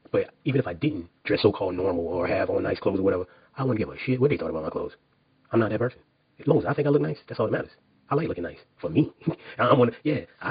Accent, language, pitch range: American, English, 100-125 Hz